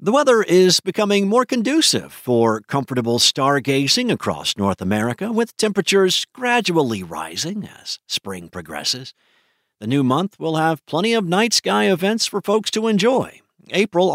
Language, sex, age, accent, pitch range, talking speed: English, male, 50-69, American, 120-185 Hz, 145 wpm